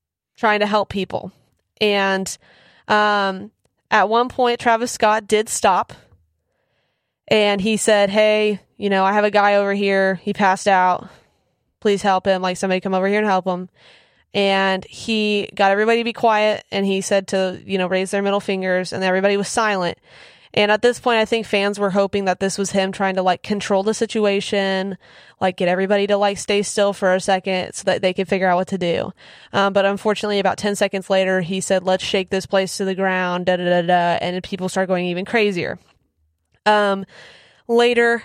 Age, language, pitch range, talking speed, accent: 20-39, English, 190-210 Hz, 200 wpm, American